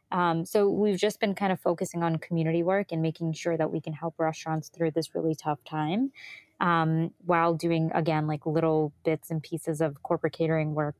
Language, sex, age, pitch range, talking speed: English, female, 20-39, 155-180 Hz, 200 wpm